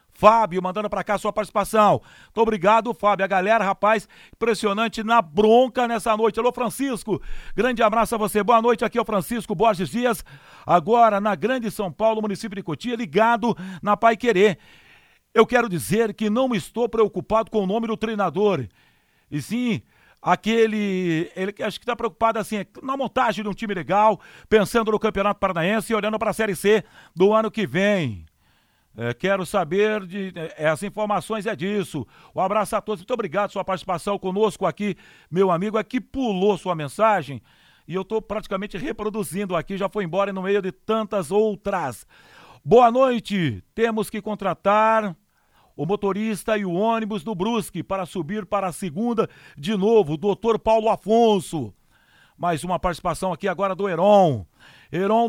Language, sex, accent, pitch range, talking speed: Portuguese, male, Brazilian, 185-225 Hz, 170 wpm